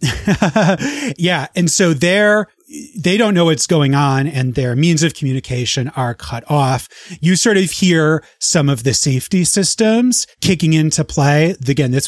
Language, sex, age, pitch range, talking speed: English, male, 30-49, 130-175 Hz, 155 wpm